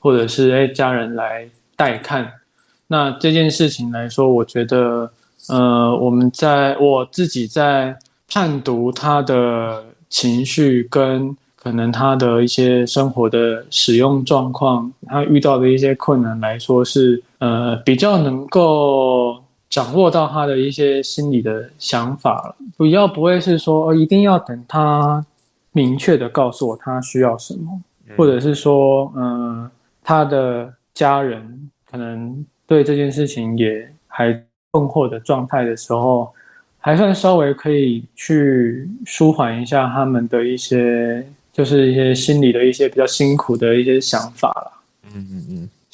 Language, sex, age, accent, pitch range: Chinese, male, 20-39, native, 120-150 Hz